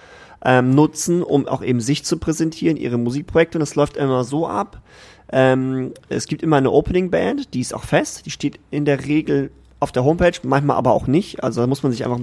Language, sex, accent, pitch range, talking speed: German, male, German, 125-150 Hz, 215 wpm